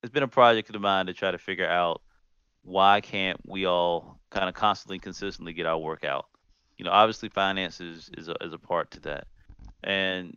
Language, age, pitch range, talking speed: English, 30-49, 85-105 Hz, 205 wpm